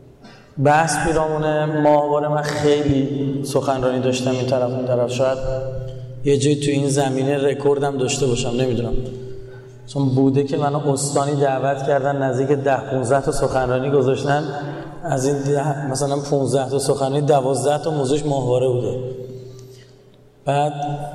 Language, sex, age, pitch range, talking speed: Persian, male, 30-49, 135-150 Hz, 130 wpm